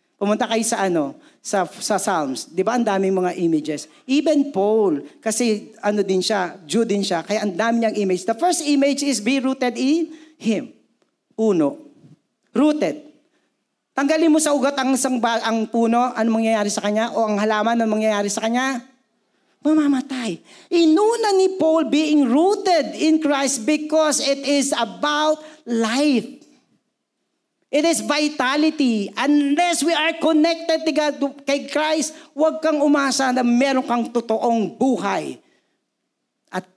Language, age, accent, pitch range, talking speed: Filipino, 50-69, native, 220-300 Hz, 140 wpm